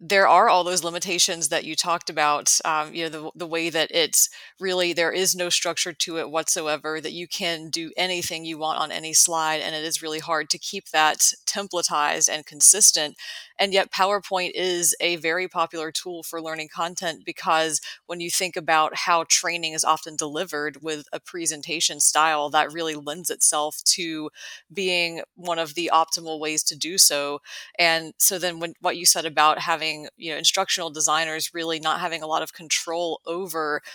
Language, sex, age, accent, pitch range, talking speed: English, female, 30-49, American, 155-175 Hz, 185 wpm